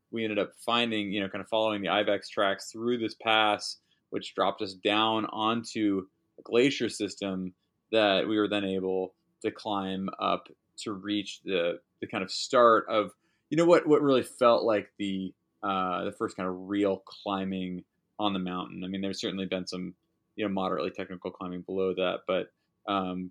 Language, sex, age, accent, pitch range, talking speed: English, male, 20-39, American, 95-115 Hz, 185 wpm